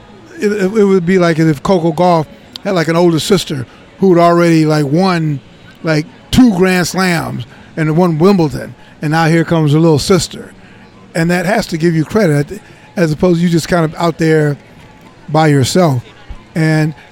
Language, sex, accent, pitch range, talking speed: English, male, American, 160-205 Hz, 175 wpm